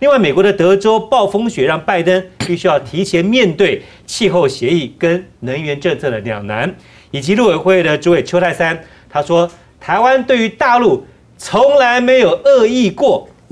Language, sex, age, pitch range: Chinese, male, 40-59, 145-200 Hz